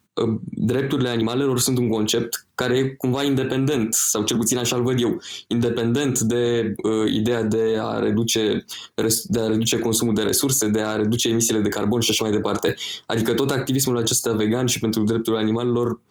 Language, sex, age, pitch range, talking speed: Romanian, male, 20-39, 110-125 Hz, 170 wpm